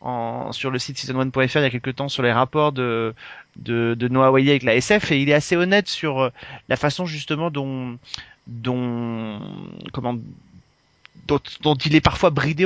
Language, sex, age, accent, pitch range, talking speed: French, male, 30-49, French, 130-165 Hz, 180 wpm